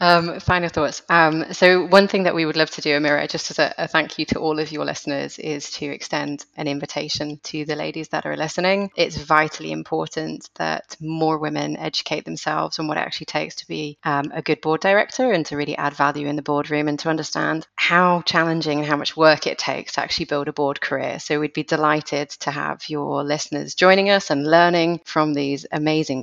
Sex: female